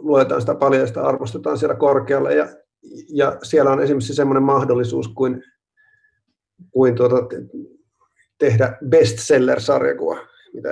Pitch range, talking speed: 130-180 Hz, 120 wpm